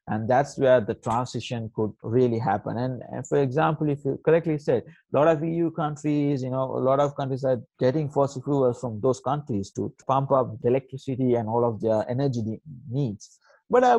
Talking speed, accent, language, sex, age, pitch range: 195 wpm, Indian, English, male, 30-49, 115-155 Hz